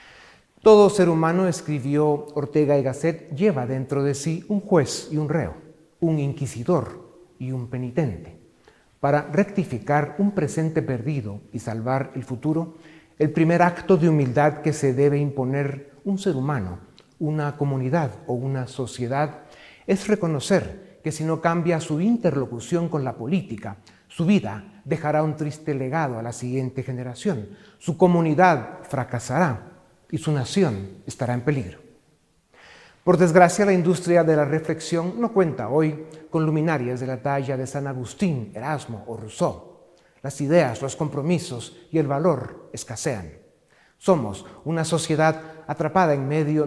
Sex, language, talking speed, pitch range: male, Spanish, 145 wpm, 130-170 Hz